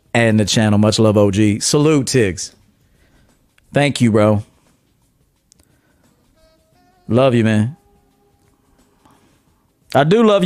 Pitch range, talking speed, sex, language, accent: 95-125 Hz, 100 wpm, male, English, American